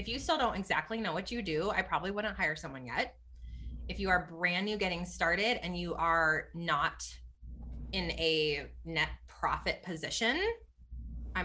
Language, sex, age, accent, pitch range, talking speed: English, female, 20-39, American, 155-205 Hz, 170 wpm